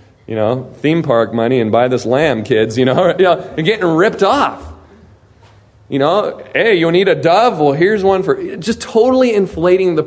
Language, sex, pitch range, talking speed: English, male, 130-190 Hz, 190 wpm